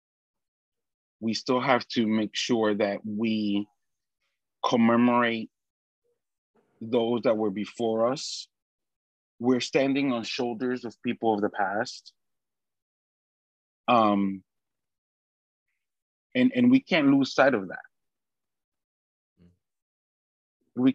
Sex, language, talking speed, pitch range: male, English, 95 wpm, 105-125 Hz